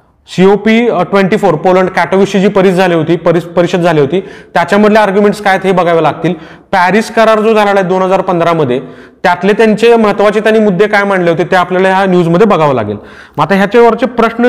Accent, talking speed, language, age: native, 160 wpm, Marathi, 30-49